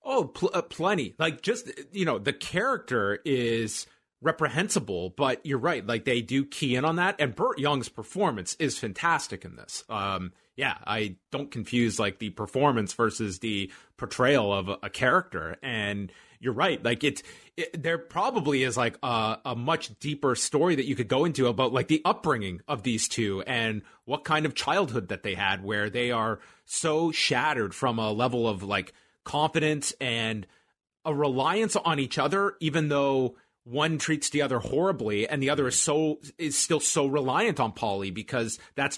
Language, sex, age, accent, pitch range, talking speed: English, male, 30-49, American, 115-155 Hz, 180 wpm